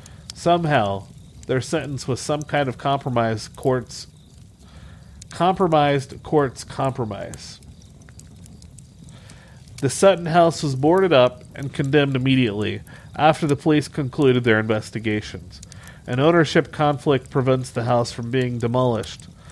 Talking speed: 110 wpm